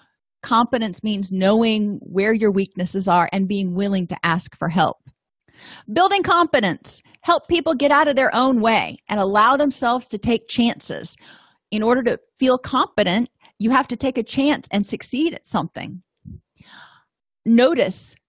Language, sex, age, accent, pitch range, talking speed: English, female, 30-49, American, 195-245 Hz, 150 wpm